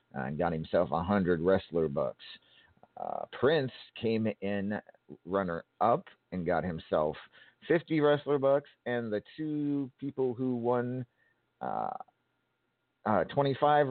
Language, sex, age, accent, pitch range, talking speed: English, male, 50-69, American, 105-145 Hz, 110 wpm